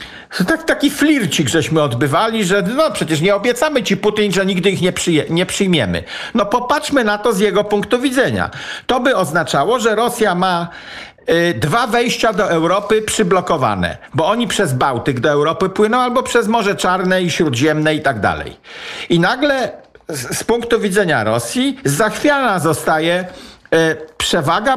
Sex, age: male, 50-69